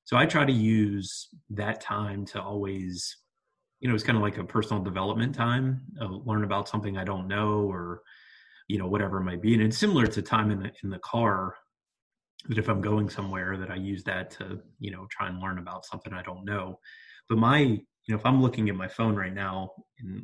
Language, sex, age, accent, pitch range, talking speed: English, male, 20-39, American, 100-120 Hz, 230 wpm